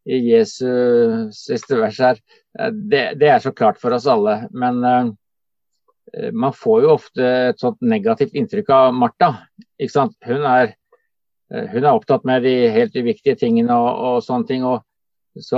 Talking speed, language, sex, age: 160 wpm, English, male, 50-69